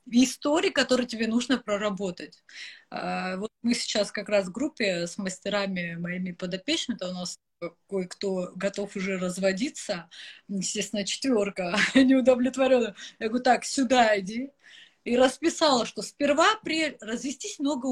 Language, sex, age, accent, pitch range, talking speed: Russian, female, 30-49, native, 200-270 Hz, 125 wpm